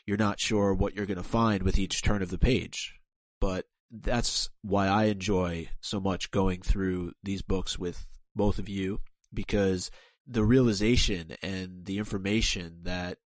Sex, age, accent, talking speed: male, 30-49, American, 165 wpm